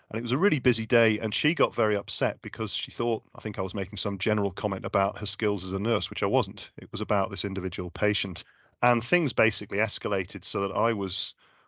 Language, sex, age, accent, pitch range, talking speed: English, male, 40-59, British, 100-115 Hz, 235 wpm